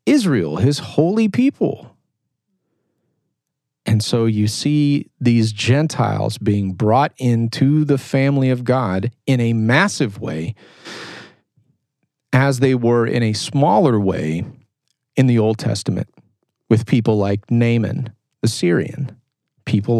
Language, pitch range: English, 110-140 Hz